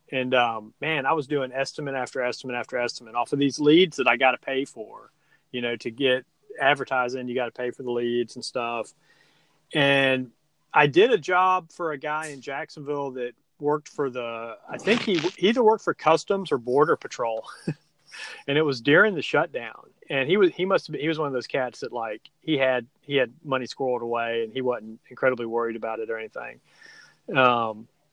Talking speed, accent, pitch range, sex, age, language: 205 wpm, American, 125-165 Hz, male, 30-49, English